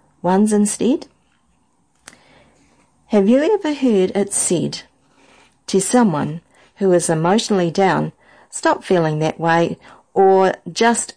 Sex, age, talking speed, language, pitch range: female, 50-69, 105 wpm, English, 165-215 Hz